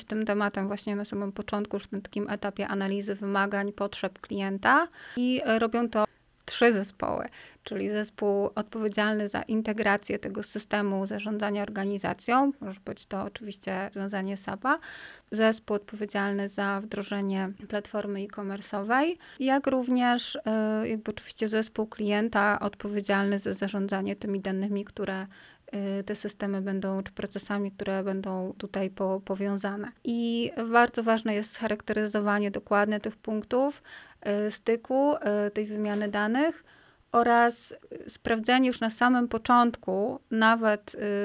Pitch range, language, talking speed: 200-220 Hz, Polish, 120 wpm